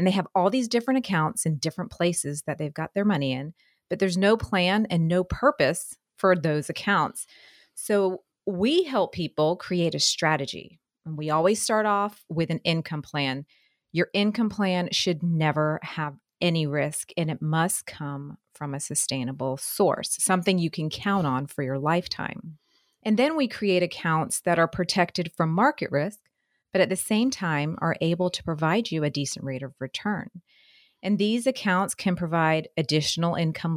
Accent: American